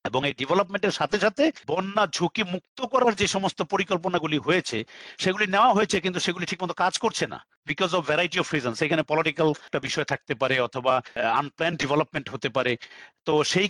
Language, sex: Bengali, male